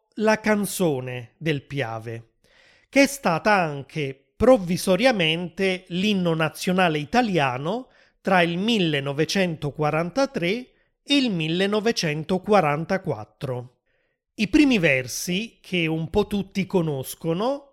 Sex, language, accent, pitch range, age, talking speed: male, Italian, native, 160-210 Hz, 30-49, 90 wpm